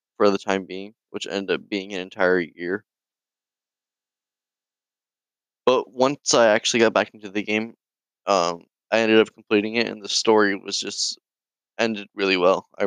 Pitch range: 95-115 Hz